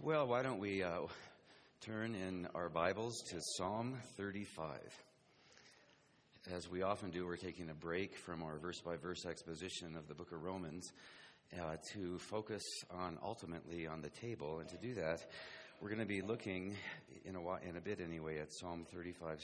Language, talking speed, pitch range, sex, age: English, 165 wpm, 85-105 Hz, male, 40-59